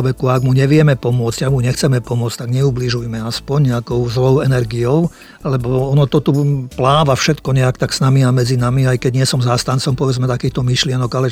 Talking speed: 185 wpm